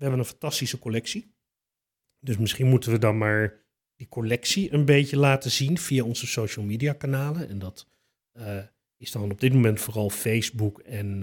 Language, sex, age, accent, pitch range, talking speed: Dutch, male, 40-59, Dutch, 115-145 Hz, 175 wpm